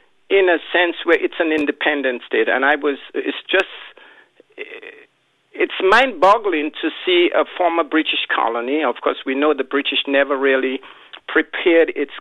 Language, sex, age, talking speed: English, male, 50-69, 150 wpm